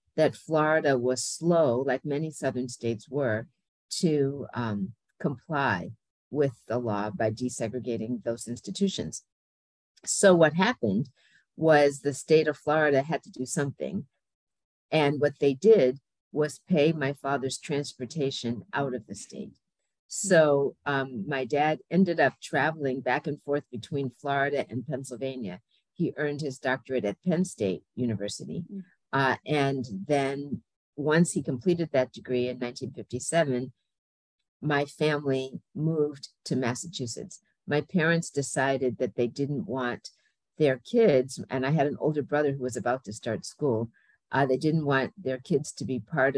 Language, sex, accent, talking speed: English, female, American, 145 wpm